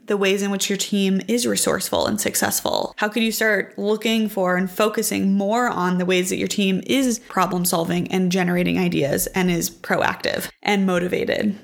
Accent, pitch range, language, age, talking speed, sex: American, 185-215 Hz, English, 20-39, 185 wpm, female